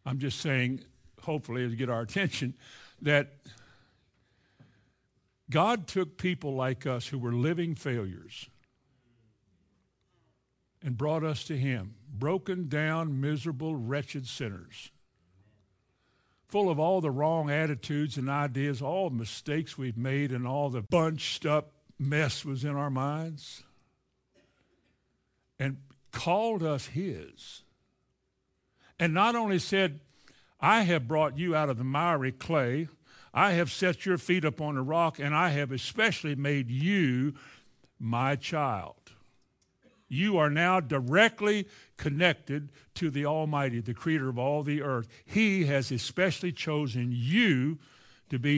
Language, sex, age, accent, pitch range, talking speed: English, male, 60-79, American, 125-165 Hz, 125 wpm